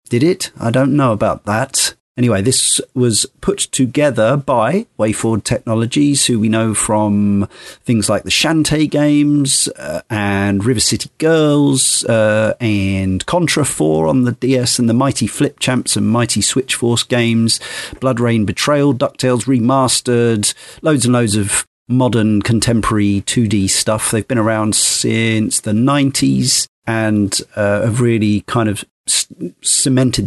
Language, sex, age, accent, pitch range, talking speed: English, male, 40-59, British, 110-135 Hz, 145 wpm